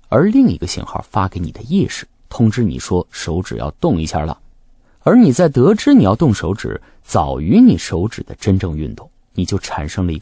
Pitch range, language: 90-150 Hz, Chinese